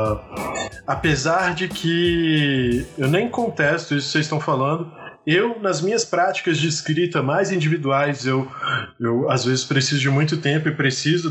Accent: Brazilian